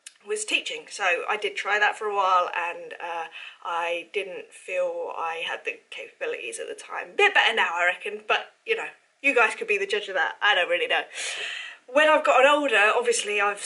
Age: 20-39